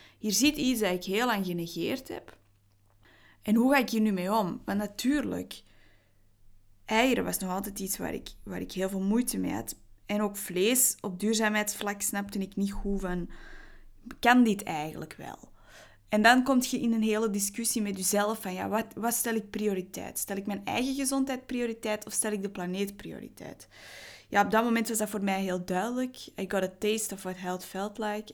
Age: 20-39